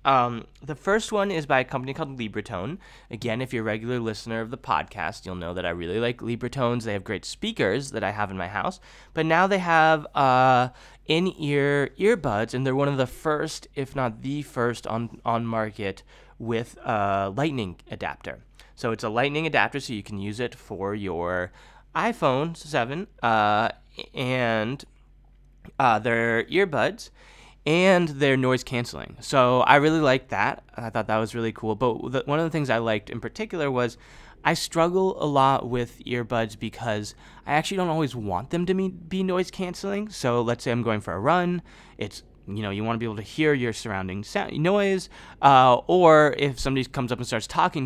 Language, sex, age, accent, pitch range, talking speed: English, male, 20-39, American, 110-150 Hz, 190 wpm